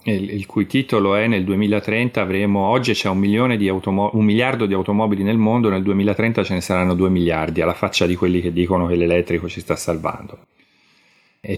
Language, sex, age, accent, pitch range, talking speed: Italian, male, 40-59, native, 95-115 Hz, 190 wpm